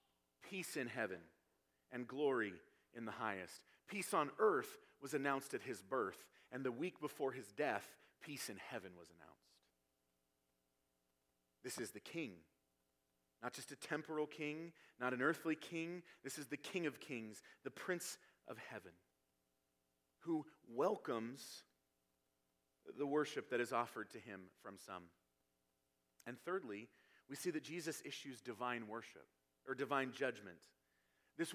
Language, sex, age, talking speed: English, male, 40-59, 140 wpm